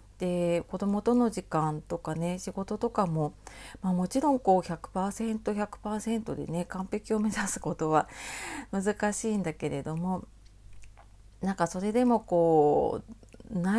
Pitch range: 155-205 Hz